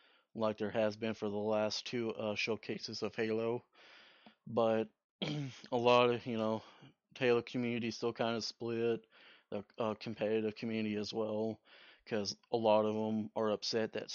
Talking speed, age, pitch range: 160 wpm, 30-49, 105-115 Hz